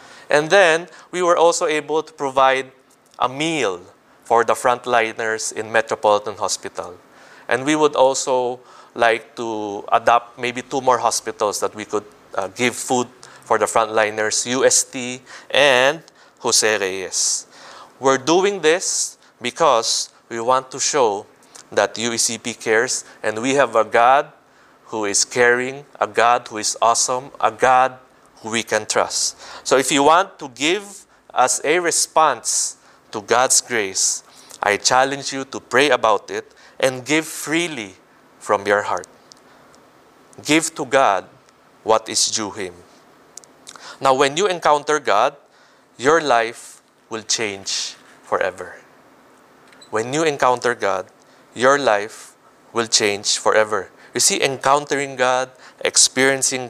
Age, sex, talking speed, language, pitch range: 20-39, male, 130 wpm, English, 115-140 Hz